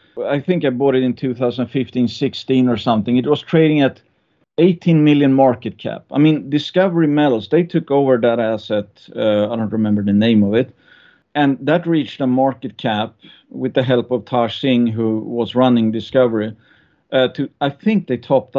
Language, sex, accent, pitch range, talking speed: English, male, Swedish, 120-150 Hz, 180 wpm